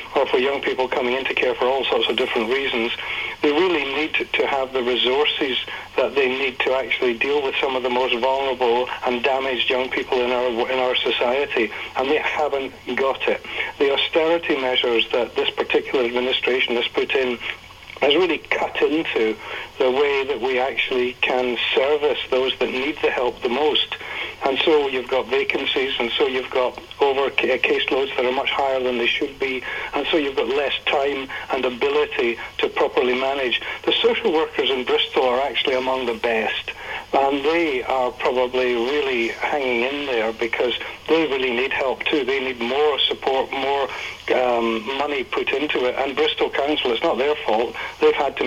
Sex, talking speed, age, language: male, 185 wpm, 60-79, English